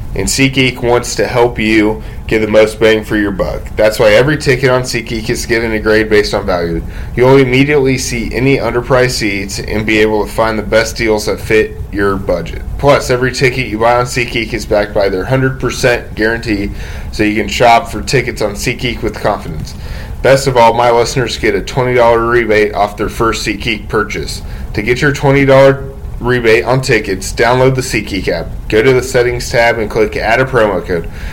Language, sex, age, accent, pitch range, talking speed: English, male, 10-29, American, 105-125 Hz, 195 wpm